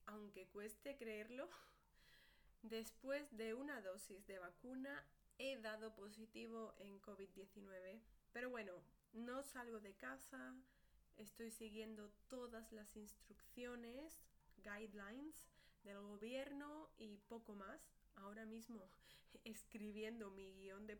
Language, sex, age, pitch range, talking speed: Spanish, female, 20-39, 210-250 Hz, 105 wpm